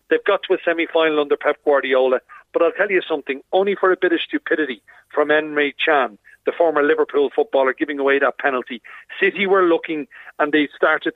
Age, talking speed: 40-59, 195 wpm